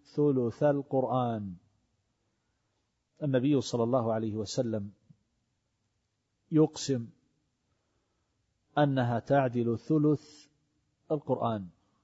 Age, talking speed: 40-59, 60 wpm